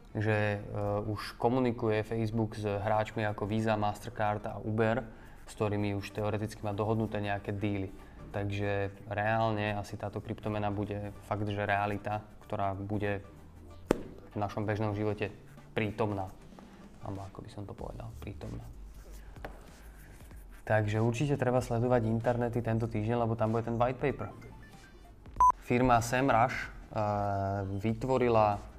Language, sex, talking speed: Slovak, male, 125 wpm